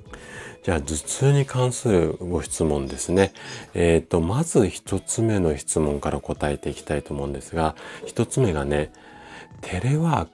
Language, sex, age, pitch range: Japanese, male, 40-59, 80-105 Hz